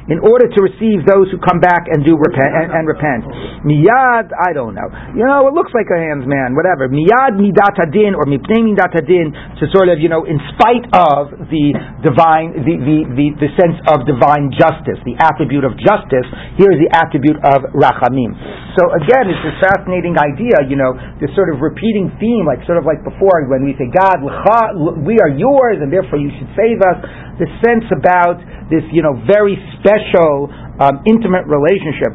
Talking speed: 190 wpm